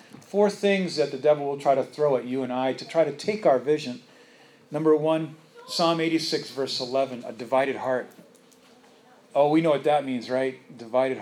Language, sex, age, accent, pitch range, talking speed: English, male, 40-59, American, 135-175 Hz, 195 wpm